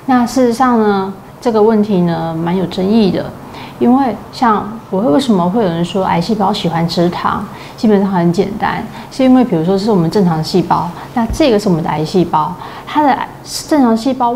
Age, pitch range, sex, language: 30-49, 180-235 Hz, female, Chinese